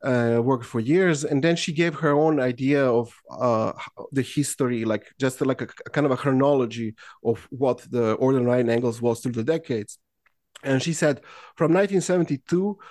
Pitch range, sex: 120-155 Hz, male